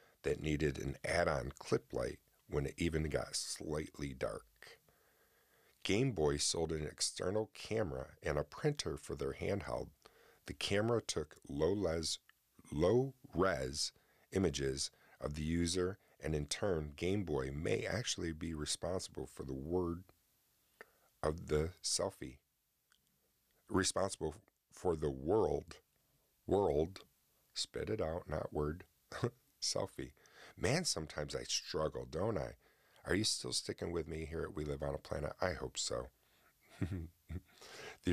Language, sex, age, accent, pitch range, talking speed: English, male, 40-59, American, 75-90 Hz, 130 wpm